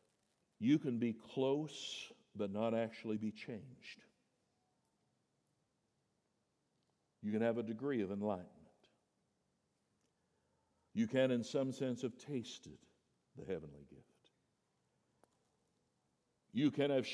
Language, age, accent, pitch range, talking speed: English, 60-79, American, 110-135 Hz, 100 wpm